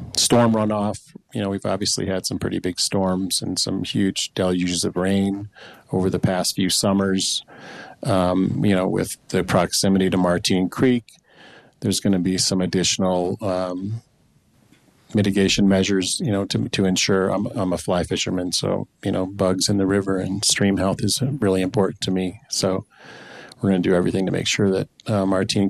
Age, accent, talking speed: 40-59, American, 180 wpm